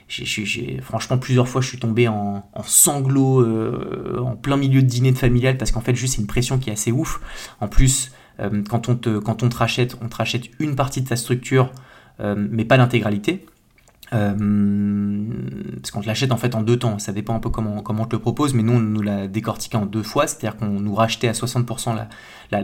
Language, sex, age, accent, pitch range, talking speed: French, male, 20-39, French, 110-125 Hz, 240 wpm